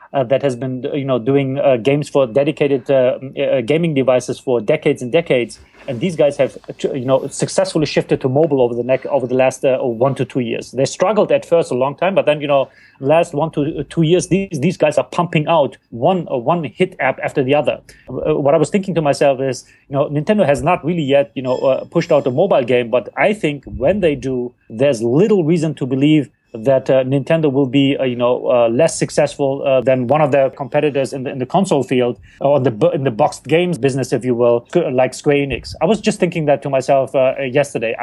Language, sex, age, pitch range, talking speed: English, male, 30-49, 135-160 Hz, 240 wpm